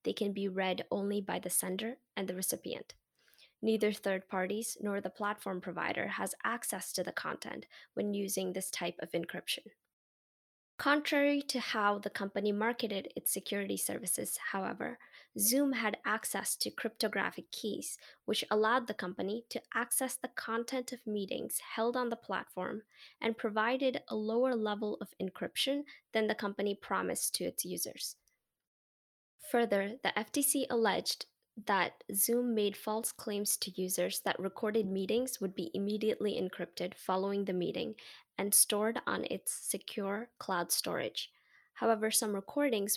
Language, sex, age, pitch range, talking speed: English, female, 10-29, 195-235 Hz, 145 wpm